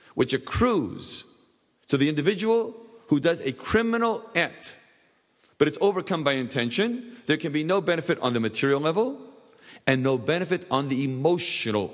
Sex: male